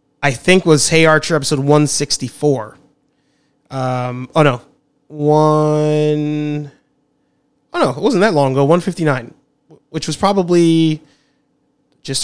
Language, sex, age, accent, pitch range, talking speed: English, male, 20-39, American, 140-160 Hz, 115 wpm